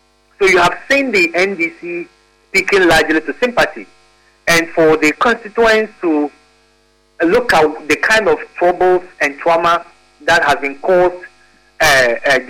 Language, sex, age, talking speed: English, male, 50-69, 130 wpm